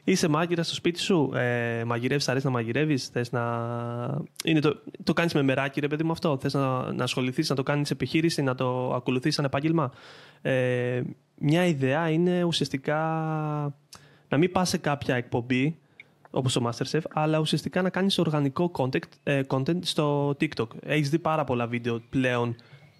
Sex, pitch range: male, 130-155 Hz